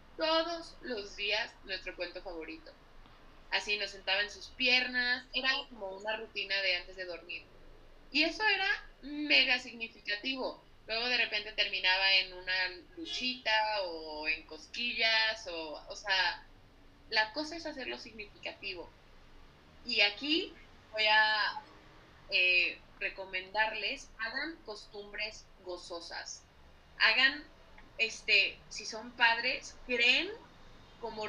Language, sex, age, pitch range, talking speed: Spanish, female, 20-39, 200-255 Hz, 115 wpm